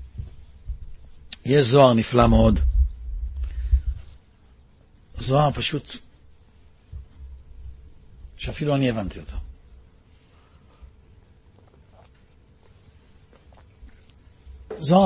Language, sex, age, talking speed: Hebrew, male, 60-79, 45 wpm